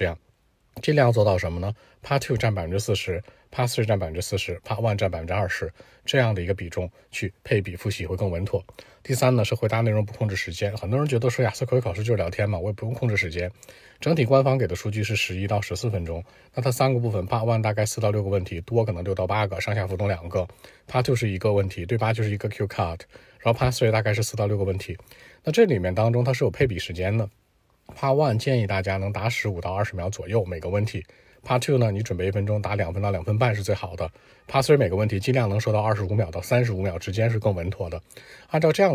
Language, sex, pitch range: Chinese, male, 95-120 Hz